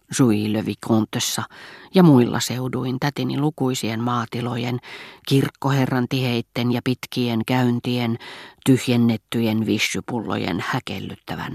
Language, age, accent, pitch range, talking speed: Finnish, 40-59, native, 115-145 Hz, 85 wpm